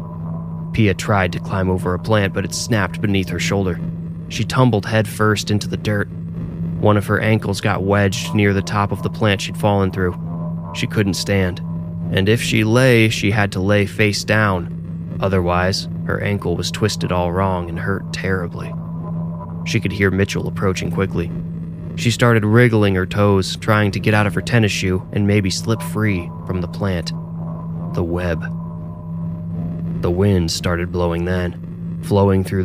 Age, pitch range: 20-39, 85-100 Hz